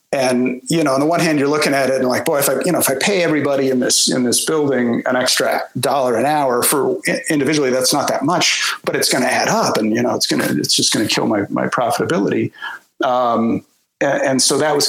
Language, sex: English, male